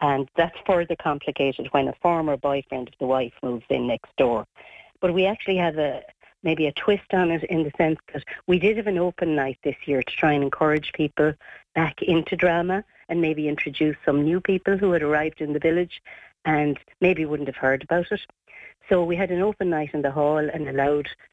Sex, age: female, 60-79